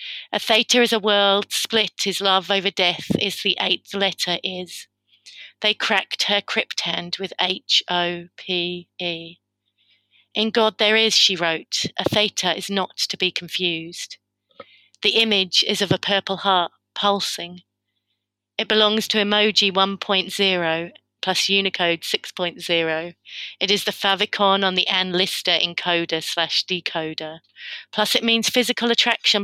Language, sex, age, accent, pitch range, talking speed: English, female, 30-49, British, 170-205 Hz, 145 wpm